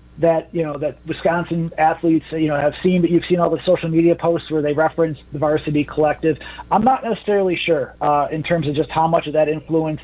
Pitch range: 155-185 Hz